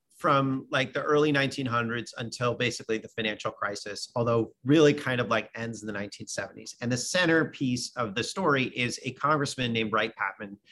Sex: male